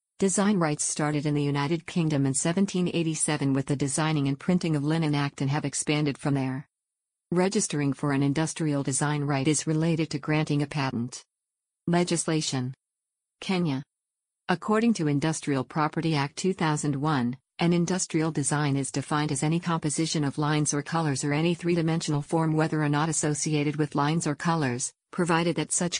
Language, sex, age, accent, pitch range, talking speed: English, female, 50-69, American, 145-165 Hz, 160 wpm